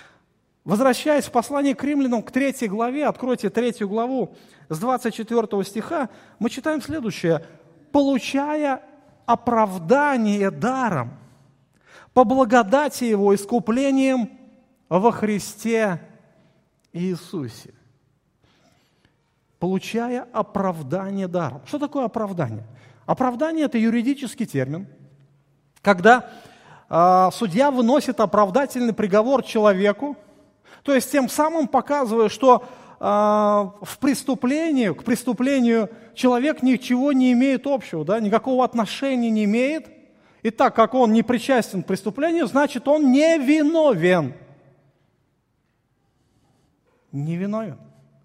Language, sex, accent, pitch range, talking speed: Russian, male, native, 190-270 Hz, 95 wpm